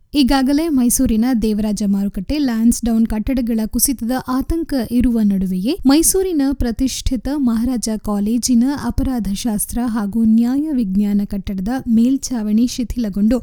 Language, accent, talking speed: Kannada, native, 95 wpm